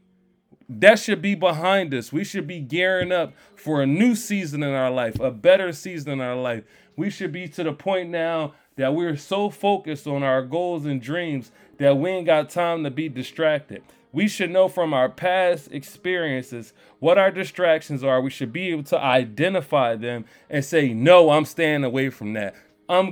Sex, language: male, English